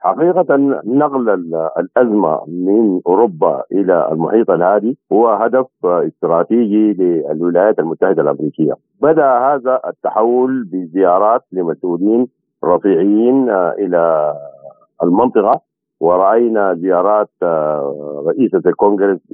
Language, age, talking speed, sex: Arabic, 50-69, 80 wpm, male